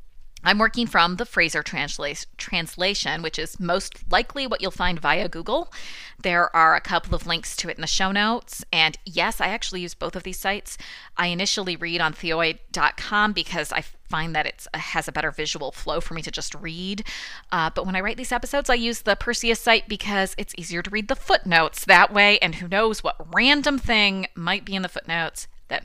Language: English